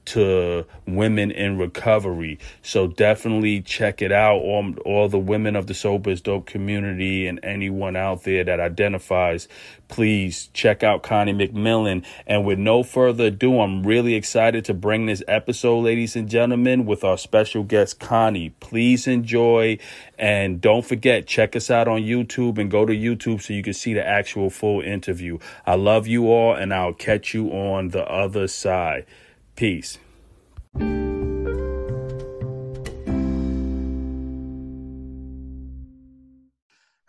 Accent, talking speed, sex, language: American, 135 wpm, male, English